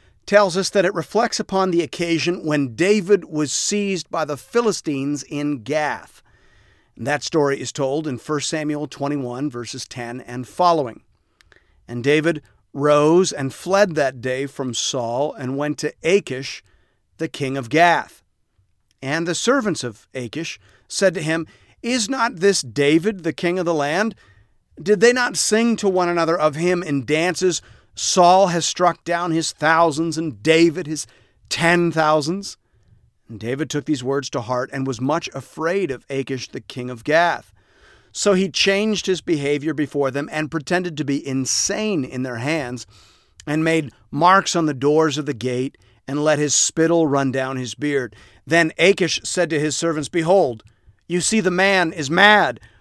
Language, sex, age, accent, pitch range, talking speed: English, male, 40-59, American, 135-175 Hz, 165 wpm